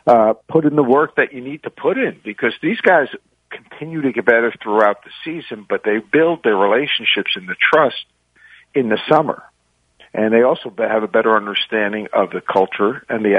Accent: American